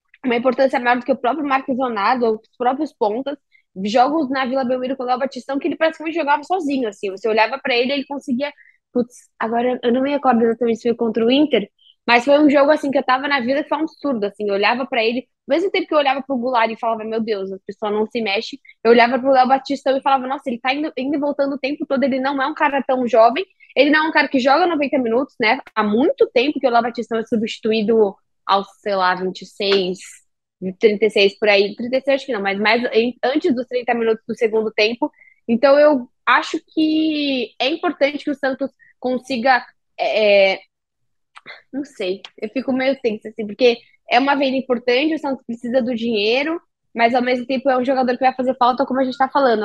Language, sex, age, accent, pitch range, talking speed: Portuguese, female, 10-29, Brazilian, 230-280 Hz, 225 wpm